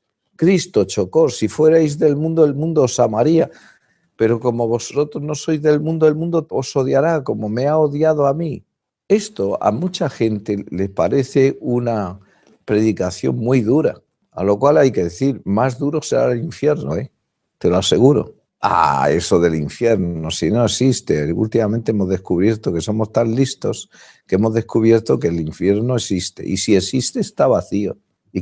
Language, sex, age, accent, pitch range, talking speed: Spanish, male, 50-69, Spanish, 95-140 Hz, 170 wpm